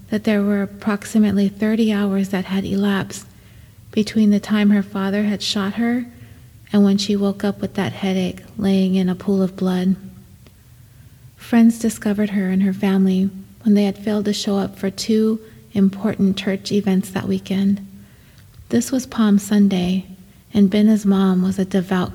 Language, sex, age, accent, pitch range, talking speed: English, female, 30-49, American, 190-210 Hz, 165 wpm